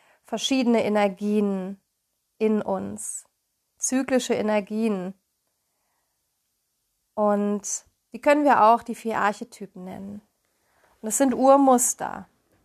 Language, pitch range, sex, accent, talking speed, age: German, 180-225 Hz, female, German, 90 wpm, 30-49